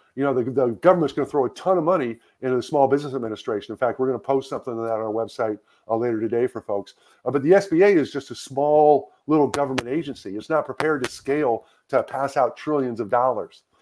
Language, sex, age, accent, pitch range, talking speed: English, male, 50-69, American, 125-155 Hz, 245 wpm